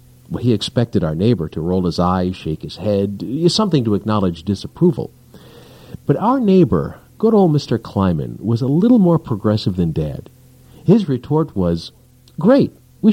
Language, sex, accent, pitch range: English, male, American, 105-150 Hz